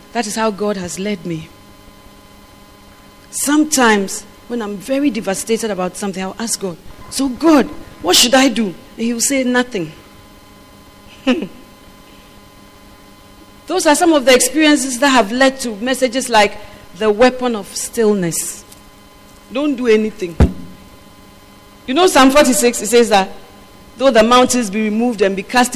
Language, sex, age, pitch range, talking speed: English, female, 40-59, 190-265 Hz, 140 wpm